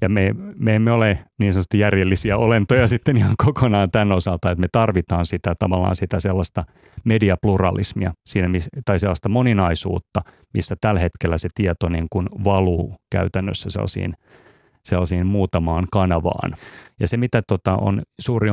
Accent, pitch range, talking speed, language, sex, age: native, 95-115 Hz, 145 wpm, Finnish, male, 30-49